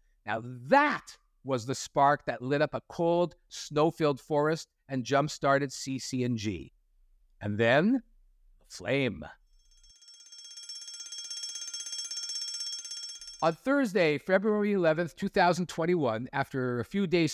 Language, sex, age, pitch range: English, male, 50-69, 130-205 Hz